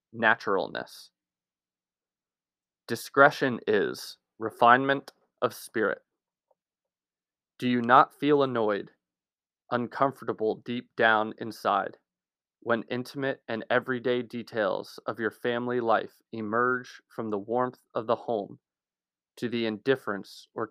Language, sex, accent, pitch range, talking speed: English, male, American, 105-130 Hz, 100 wpm